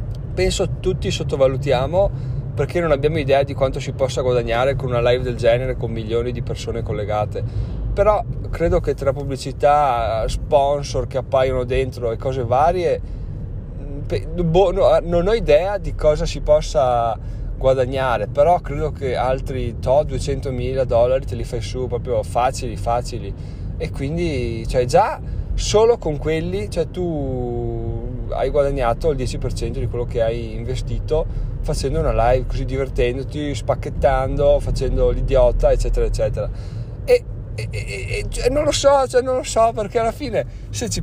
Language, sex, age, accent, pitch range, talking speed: Italian, male, 30-49, native, 115-150 Hz, 145 wpm